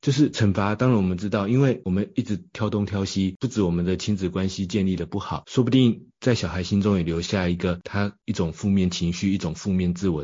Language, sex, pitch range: Chinese, male, 90-125 Hz